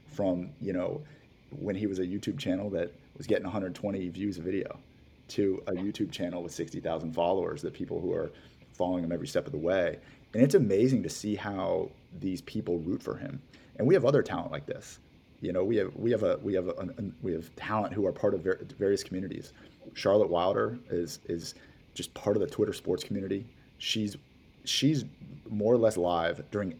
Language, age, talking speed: English, 30-49, 205 wpm